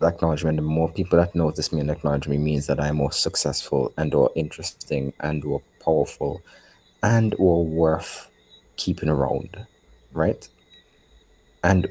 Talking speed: 140 wpm